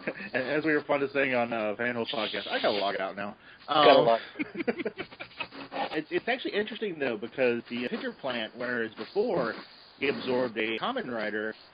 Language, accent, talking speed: English, American, 170 wpm